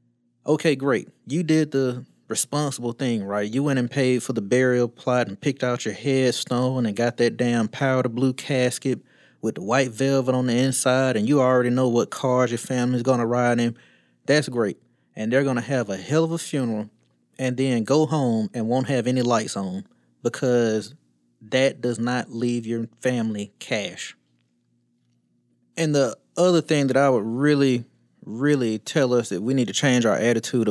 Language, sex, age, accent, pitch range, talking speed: English, male, 20-39, American, 105-135 Hz, 190 wpm